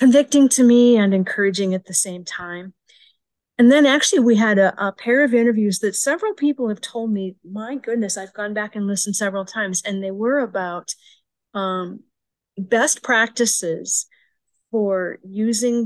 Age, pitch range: 40-59, 190-230 Hz